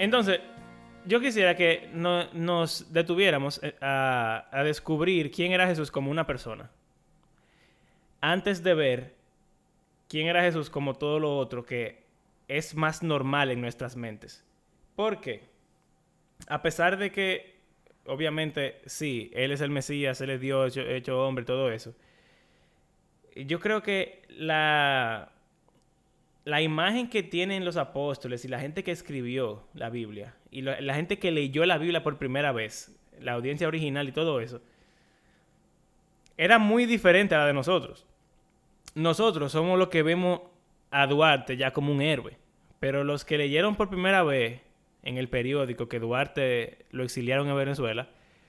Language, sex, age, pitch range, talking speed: Spanish, male, 20-39, 135-175 Hz, 145 wpm